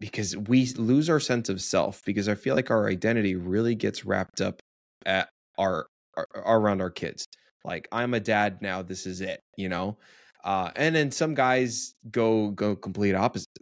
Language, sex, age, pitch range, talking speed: English, male, 20-39, 95-110 Hz, 185 wpm